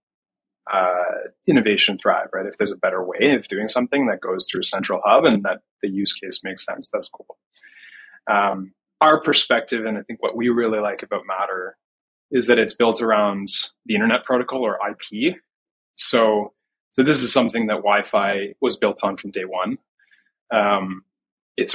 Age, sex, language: 20-39, male, English